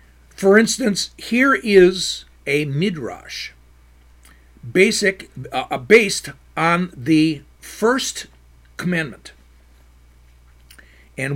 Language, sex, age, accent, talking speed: English, male, 50-69, American, 75 wpm